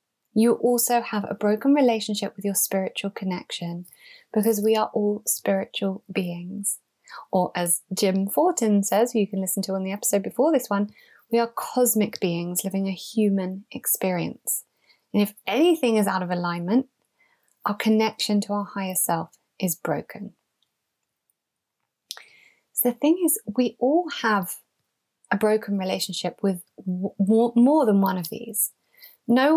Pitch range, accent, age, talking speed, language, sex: 195-245 Hz, British, 20-39, 150 wpm, English, female